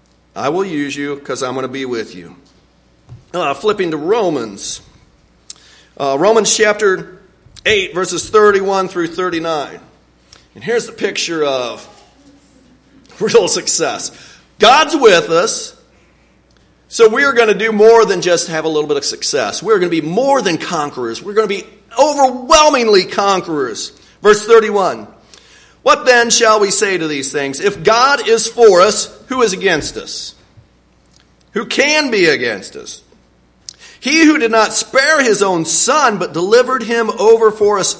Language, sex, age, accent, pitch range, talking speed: English, male, 50-69, American, 175-270 Hz, 155 wpm